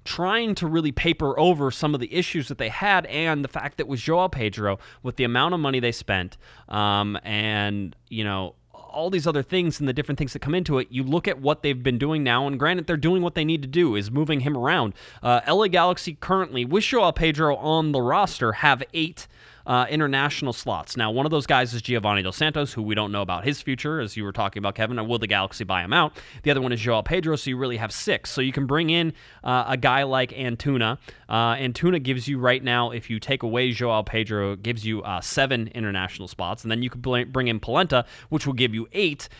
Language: English